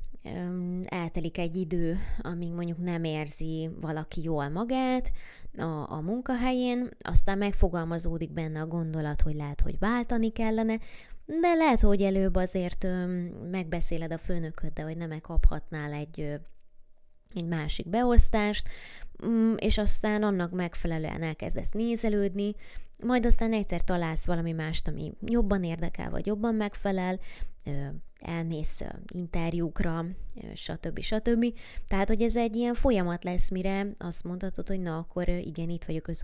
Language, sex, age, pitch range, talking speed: Hungarian, female, 20-39, 165-205 Hz, 125 wpm